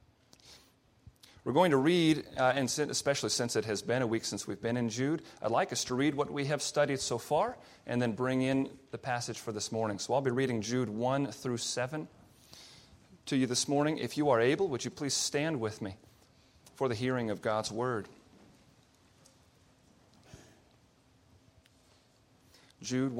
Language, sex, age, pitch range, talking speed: English, male, 40-59, 110-145 Hz, 175 wpm